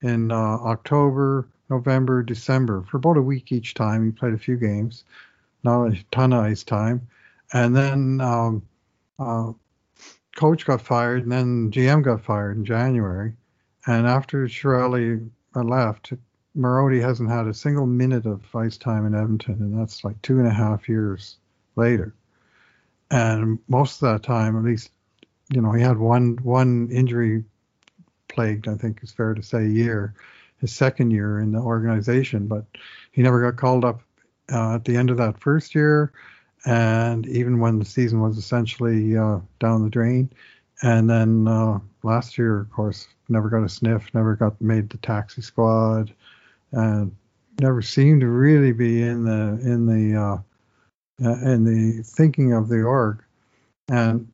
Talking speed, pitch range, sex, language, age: 165 wpm, 110-125 Hz, male, English, 60-79